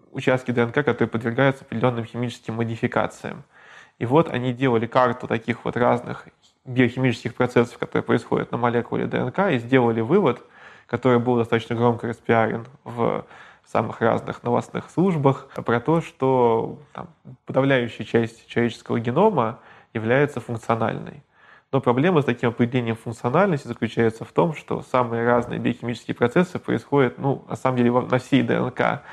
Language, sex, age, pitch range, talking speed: Russian, male, 20-39, 115-135 Hz, 140 wpm